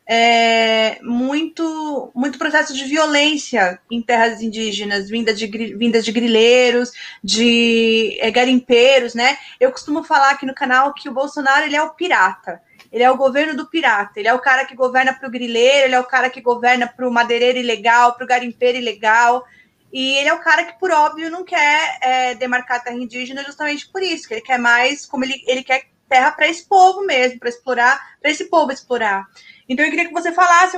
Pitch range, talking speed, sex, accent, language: 235-285 Hz, 200 wpm, female, Brazilian, Portuguese